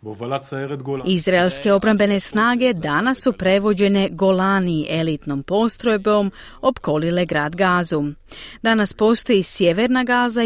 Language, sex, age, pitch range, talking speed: Croatian, female, 40-59, 160-220 Hz, 90 wpm